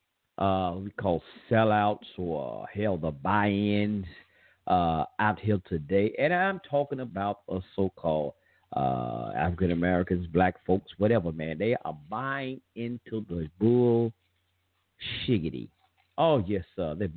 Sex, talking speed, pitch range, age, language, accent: male, 135 wpm, 90-110 Hz, 50-69, English, American